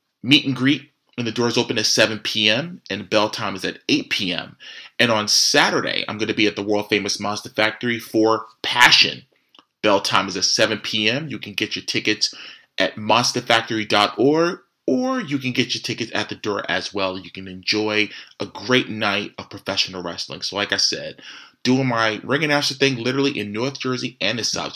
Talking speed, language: 195 wpm, English